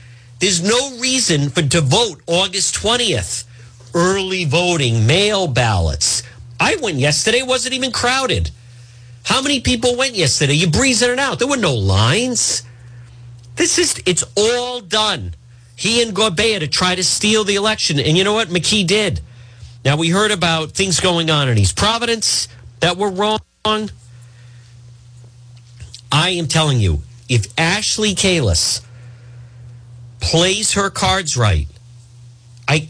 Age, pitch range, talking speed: 50-69, 120-185 Hz, 140 wpm